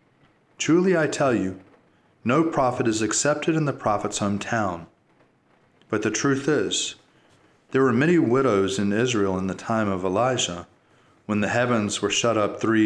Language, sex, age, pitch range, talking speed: English, male, 40-59, 95-120 Hz, 160 wpm